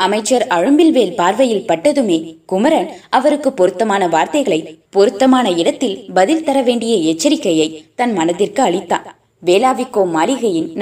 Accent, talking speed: native, 105 wpm